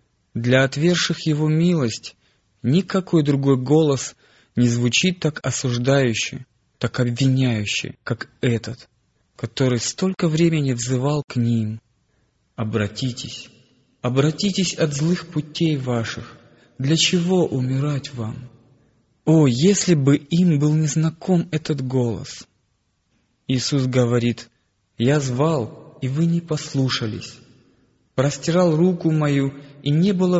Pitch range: 120-155 Hz